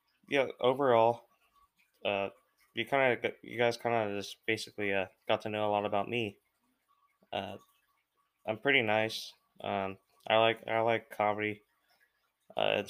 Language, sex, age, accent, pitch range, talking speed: English, male, 20-39, American, 105-115 Hz, 150 wpm